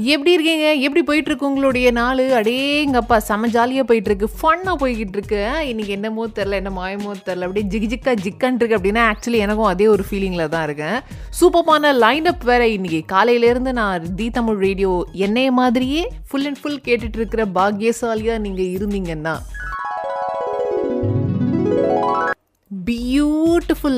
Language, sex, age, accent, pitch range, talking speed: Tamil, female, 20-39, native, 195-265 Hz, 140 wpm